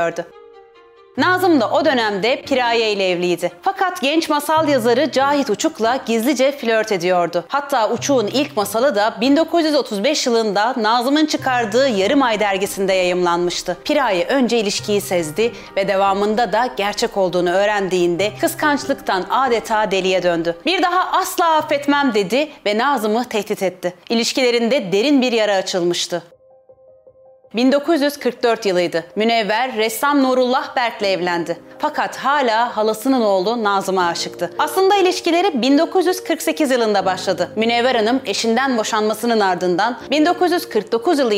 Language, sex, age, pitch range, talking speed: Turkish, female, 30-49, 195-285 Hz, 115 wpm